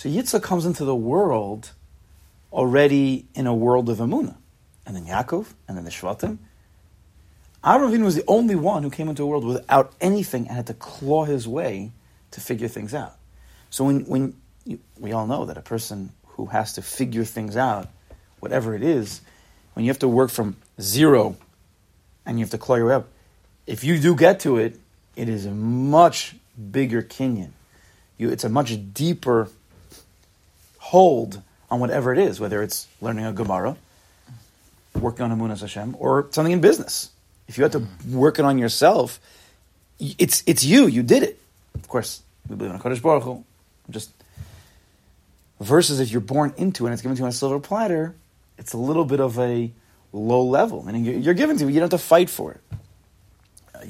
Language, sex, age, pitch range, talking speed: English, male, 30-49, 100-140 Hz, 185 wpm